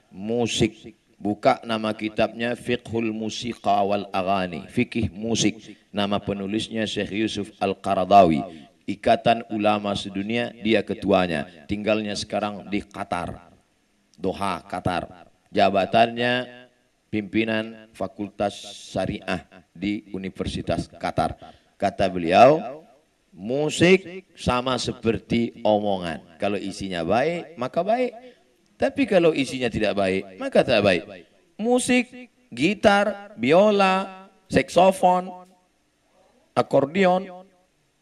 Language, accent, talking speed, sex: Indonesian, native, 90 wpm, male